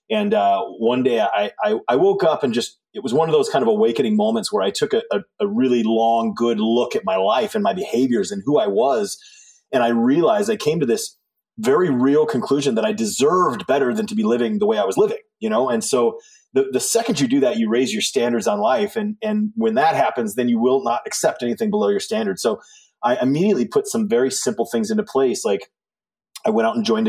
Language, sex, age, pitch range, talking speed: English, male, 30-49, 135-220 Hz, 240 wpm